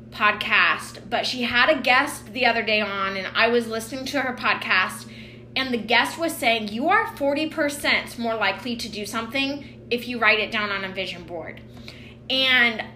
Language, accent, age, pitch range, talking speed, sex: English, American, 20-39, 205-265 Hz, 185 wpm, female